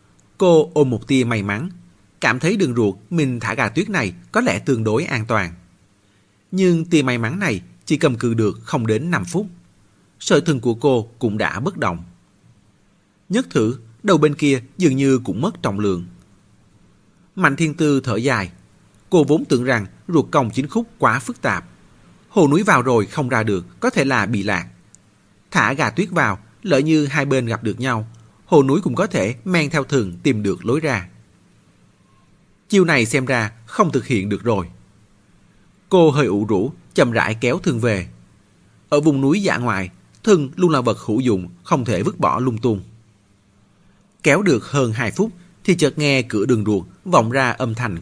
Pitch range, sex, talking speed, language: 110-160 Hz, male, 190 wpm, Vietnamese